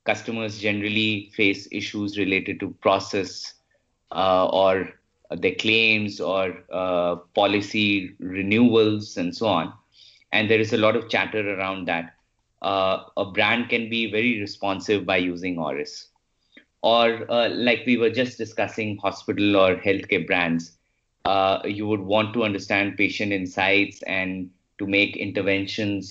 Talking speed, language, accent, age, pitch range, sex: 140 wpm, English, Indian, 30-49, 95-110 Hz, male